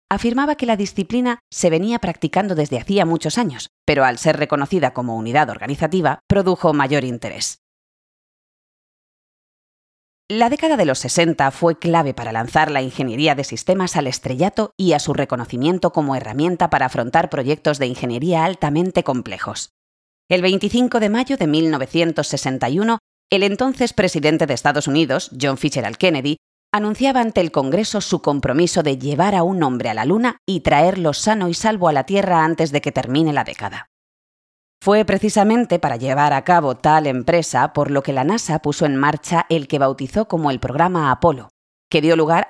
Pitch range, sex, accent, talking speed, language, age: 140-190 Hz, female, Spanish, 165 wpm, Spanish, 30-49